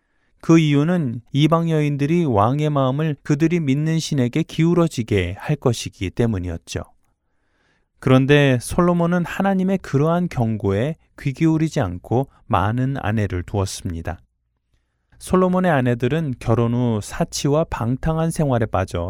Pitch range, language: 100-155 Hz, Korean